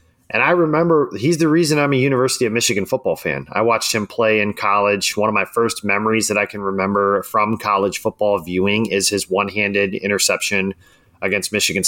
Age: 30-49